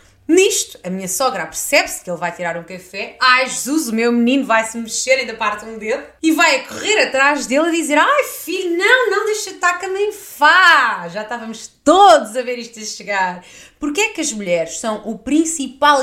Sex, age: female, 20-39